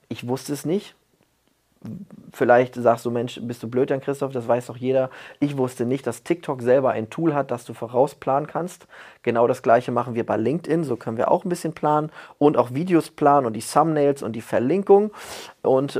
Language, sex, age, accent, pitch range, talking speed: German, male, 30-49, German, 120-150 Hz, 205 wpm